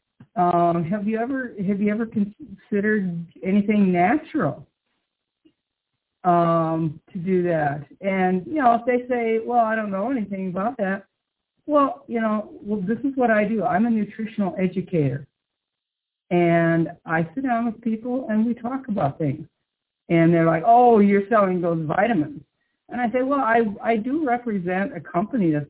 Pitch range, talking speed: 165-230 Hz, 165 wpm